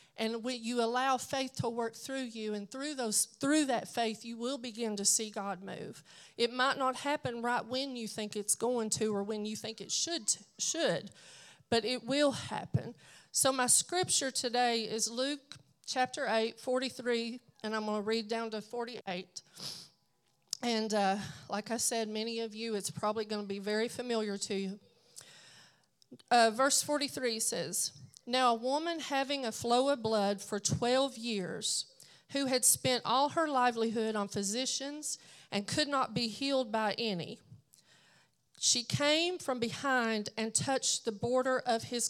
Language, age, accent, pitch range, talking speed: English, 40-59, American, 210-260 Hz, 170 wpm